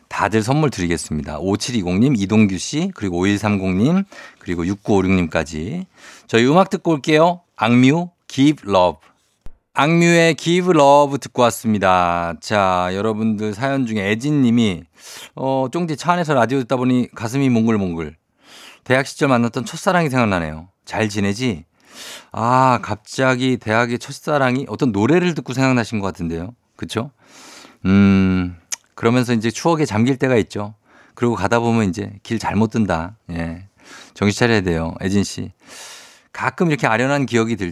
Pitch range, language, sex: 95-135 Hz, Korean, male